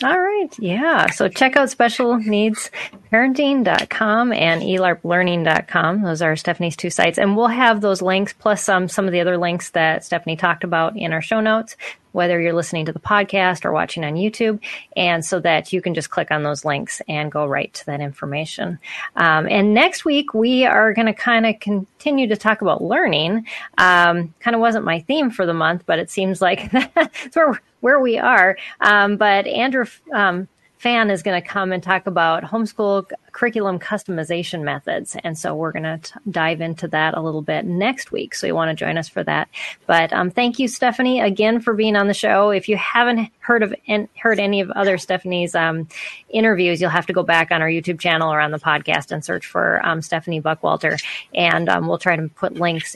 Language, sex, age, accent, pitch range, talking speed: English, female, 30-49, American, 170-230 Hz, 205 wpm